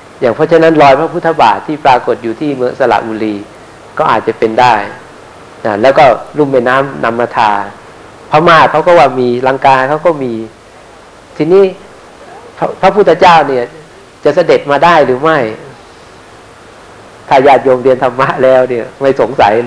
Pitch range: 120-150 Hz